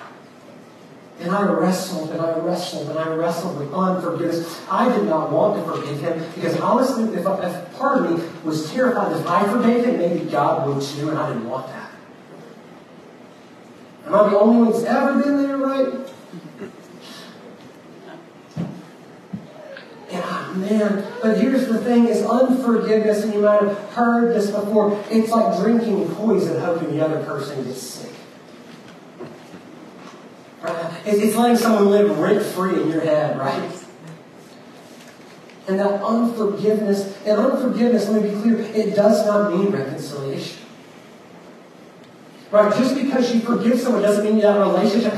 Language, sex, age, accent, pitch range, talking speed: English, male, 40-59, American, 185-235 Hz, 145 wpm